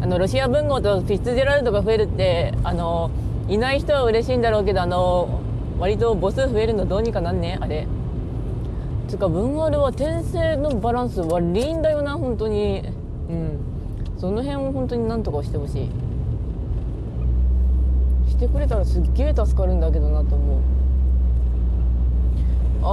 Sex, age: female, 20-39